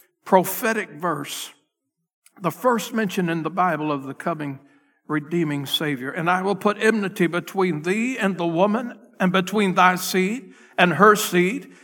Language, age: English, 60-79